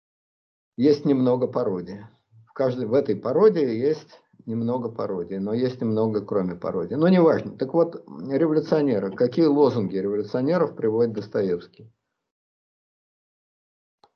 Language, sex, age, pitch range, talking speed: Russian, male, 50-69, 110-155 Hz, 110 wpm